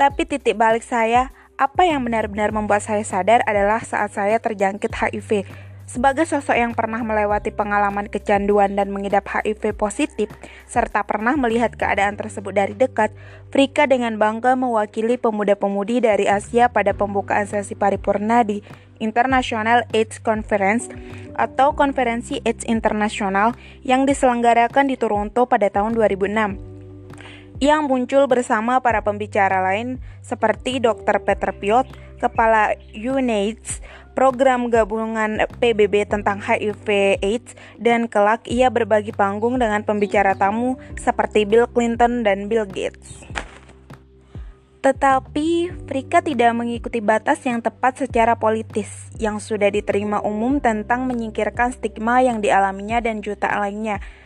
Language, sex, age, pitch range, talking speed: Indonesian, female, 20-39, 205-240 Hz, 125 wpm